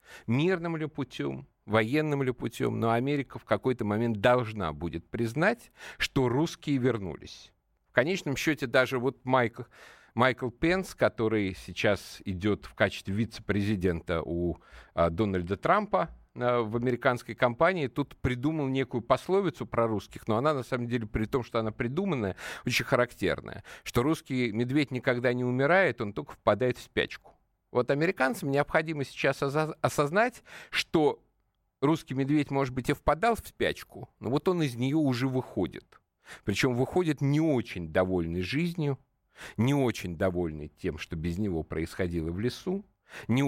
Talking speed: 145 wpm